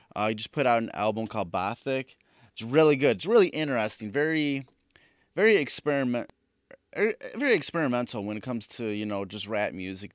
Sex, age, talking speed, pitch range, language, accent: male, 20-39, 170 wpm, 105-130 Hz, English, American